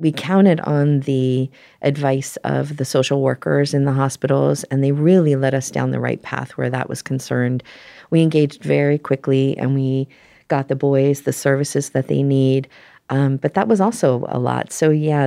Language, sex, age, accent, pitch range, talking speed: English, female, 40-59, American, 135-150 Hz, 190 wpm